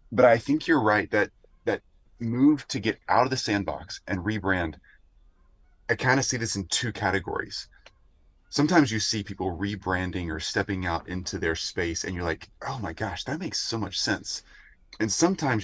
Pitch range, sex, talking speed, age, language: 90-130 Hz, male, 185 wpm, 30-49, English